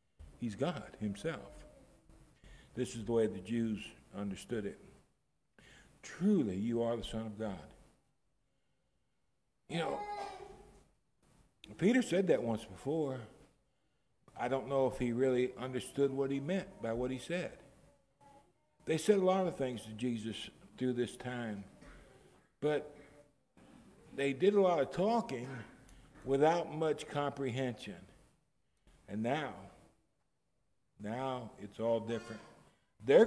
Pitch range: 115-150 Hz